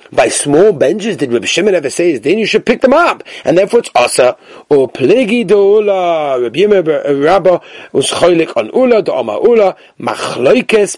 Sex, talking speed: male, 190 wpm